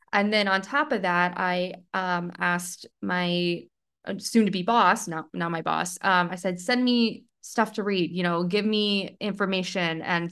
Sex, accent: female, American